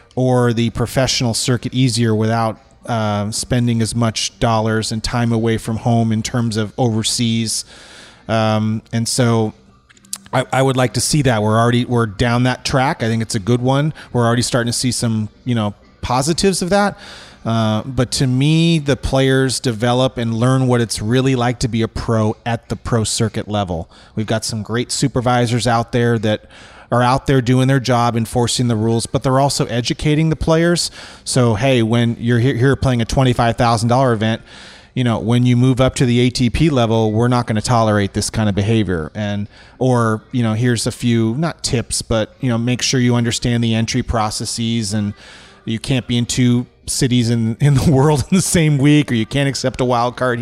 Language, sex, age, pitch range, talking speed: English, male, 30-49, 115-130 Hz, 200 wpm